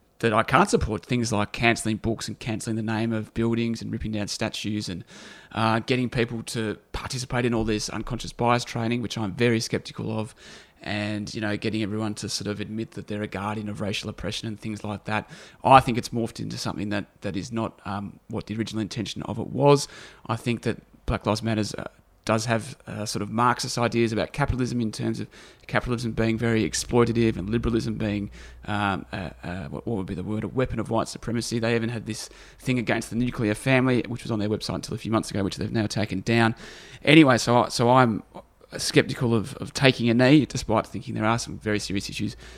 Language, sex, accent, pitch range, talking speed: English, male, Australian, 105-120 Hz, 215 wpm